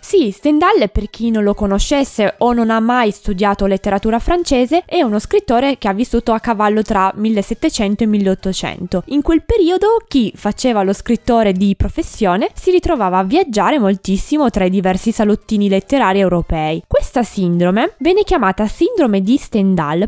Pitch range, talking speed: 195-290 Hz, 160 wpm